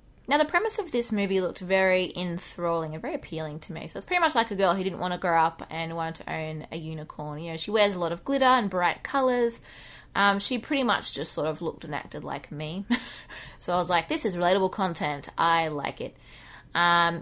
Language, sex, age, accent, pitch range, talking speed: English, female, 20-39, Australian, 165-220 Hz, 235 wpm